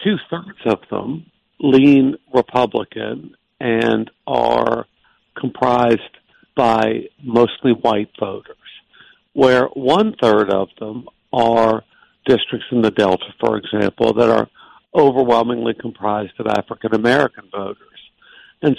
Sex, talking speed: male, 105 wpm